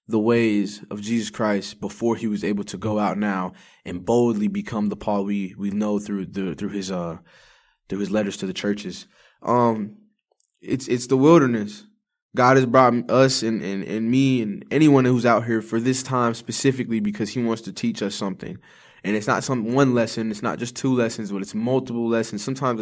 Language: English